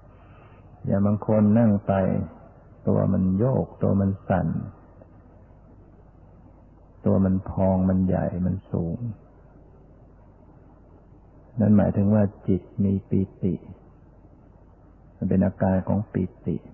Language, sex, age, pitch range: Thai, male, 60-79, 90-105 Hz